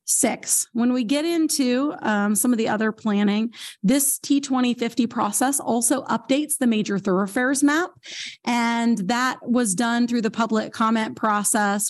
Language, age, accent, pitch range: English, 30-49, American, 215-255 Hz